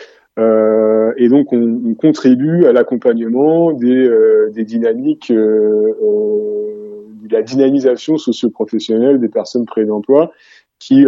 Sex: male